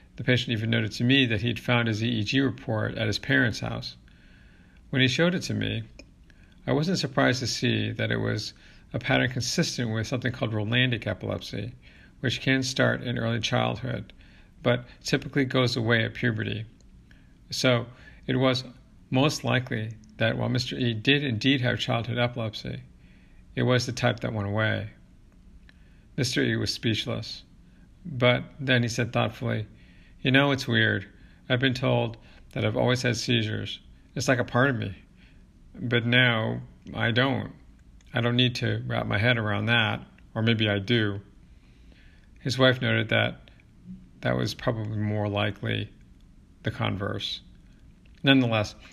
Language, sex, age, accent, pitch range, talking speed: English, male, 50-69, American, 105-125 Hz, 155 wpm